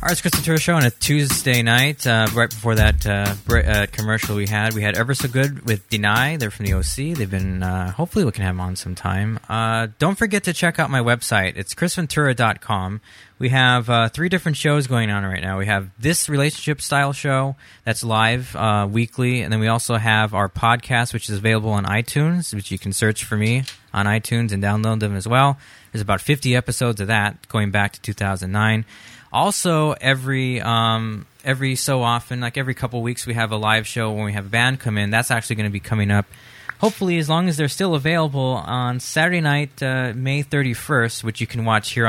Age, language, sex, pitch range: 20-39, English, male, 110-140 Hz